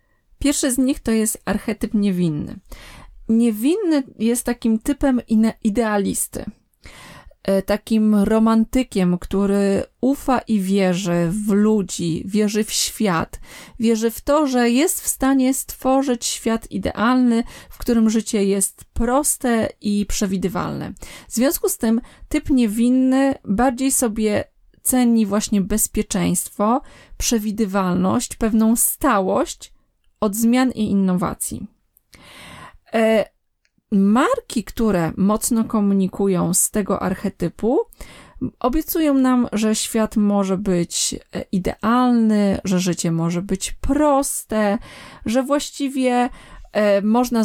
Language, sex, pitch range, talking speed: Polish, female, 195-250 Hz, 100 wpm